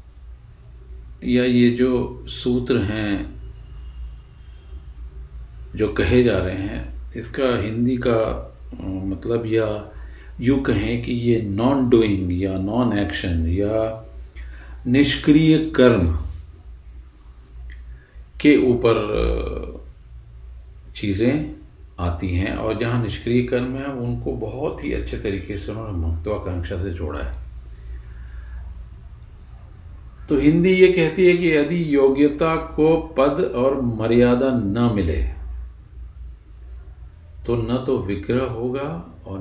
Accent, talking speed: native, 105 wpm